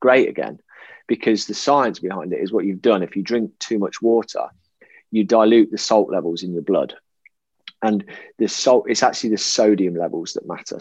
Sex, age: male, 20-39